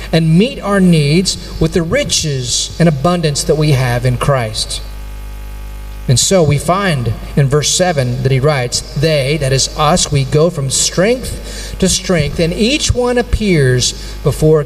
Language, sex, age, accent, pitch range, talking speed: Indonesian, male, 40-59, American, 120-170 Hz, 160 wpm